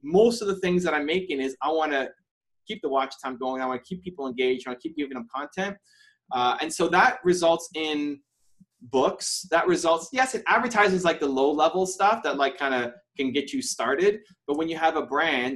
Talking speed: 230 wpm